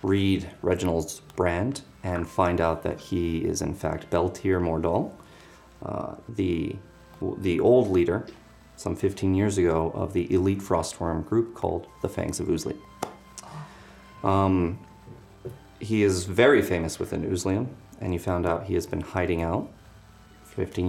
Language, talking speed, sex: English, 145 wpm, male